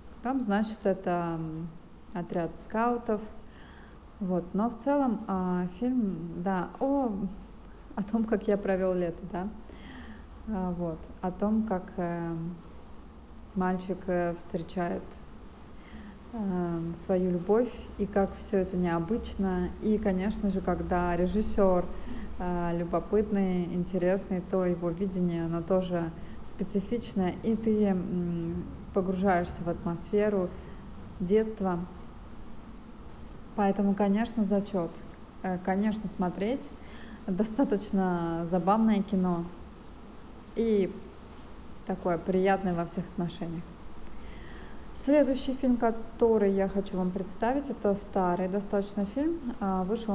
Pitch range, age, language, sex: 175-210 Hz, 20-39, Russian, female